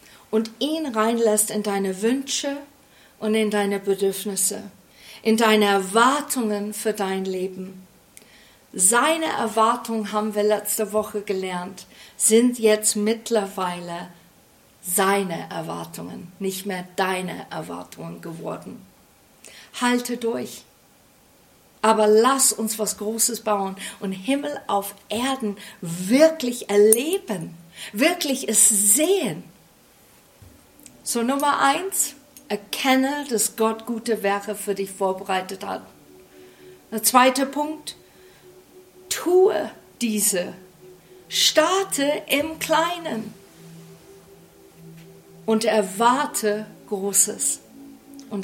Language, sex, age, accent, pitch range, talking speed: German, female, 50-69, German, 195-245 Hz, 90 wpm